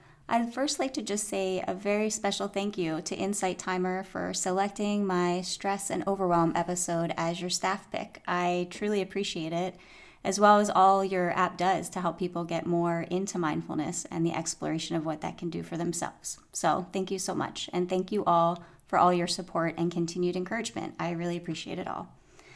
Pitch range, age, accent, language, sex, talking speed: 175-205 Hz, 30-49, American, English, female, 195 wpm